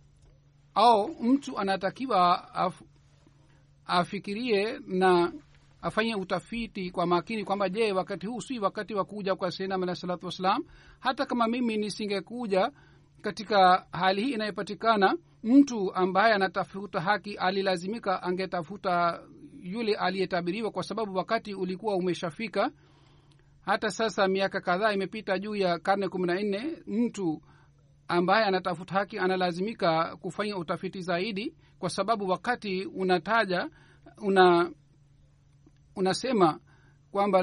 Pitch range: 145-205 Hz